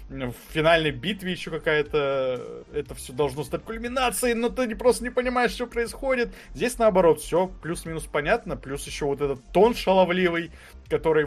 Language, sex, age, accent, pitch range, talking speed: Russian, male, 20-39, native, 130-165 Hz, 155 wpm